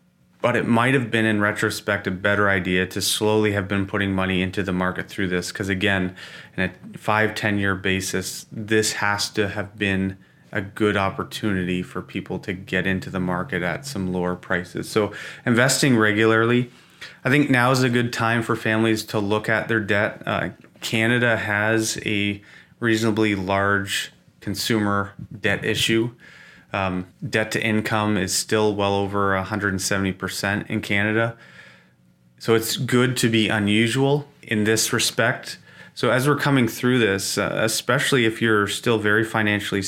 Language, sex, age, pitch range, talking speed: English, male, 30-49, 95-115 Hz, 165 wpm